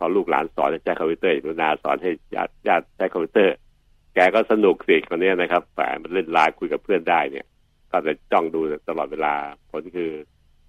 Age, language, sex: 60-79, Thai, male